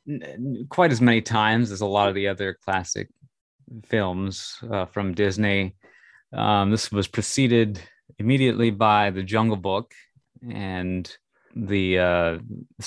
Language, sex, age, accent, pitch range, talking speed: English, male, 30-49, American, 95-120 Hz, 125 wpm